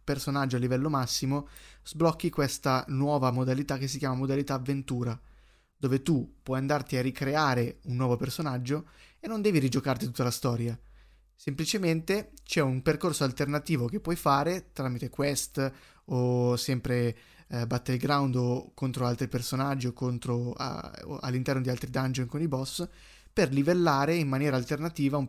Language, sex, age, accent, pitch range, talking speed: Italian, male, 20-39, native, 130-150 Hz, 145 wpm